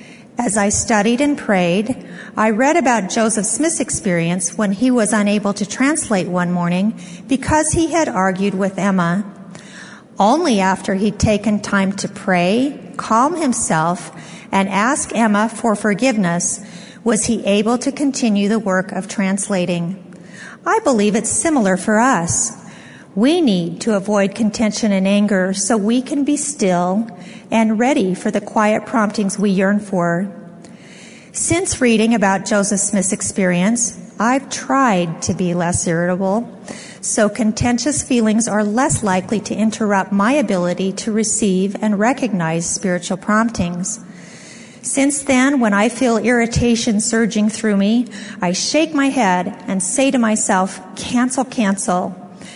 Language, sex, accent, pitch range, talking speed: English, female, American, 195-235 Hz, 140 wpm